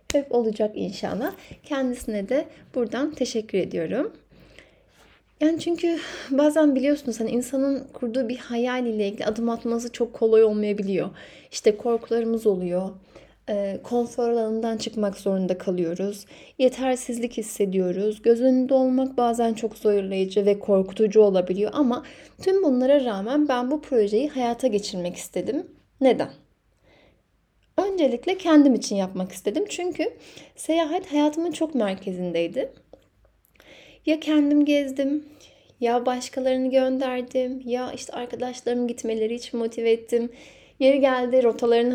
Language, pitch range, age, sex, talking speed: Turkish, 220-275 Hz, 10-29, female, 115 wpm